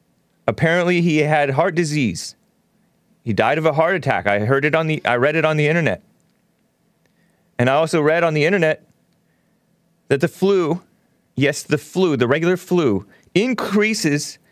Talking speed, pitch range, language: 160 wpm, 140-180 Hz, English